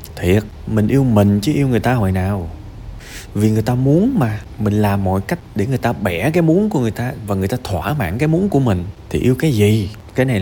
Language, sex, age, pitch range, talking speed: Vietnamese, male, 20-39, 90-110 Hz, 250 wpm